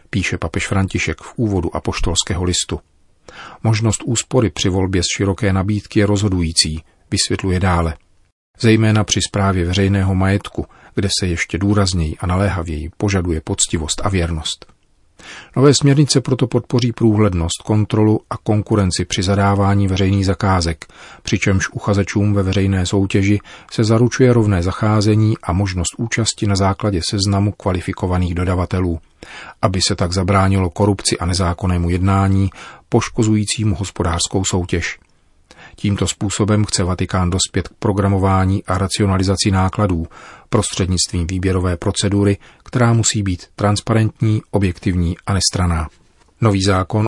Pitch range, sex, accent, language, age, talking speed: 90-105 Hz, male, native, Czech, 40-59, 120 wpm